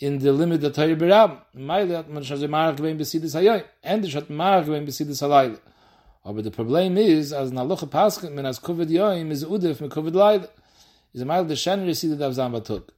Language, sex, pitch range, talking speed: English, male, 135-175 Hz, 115 wpm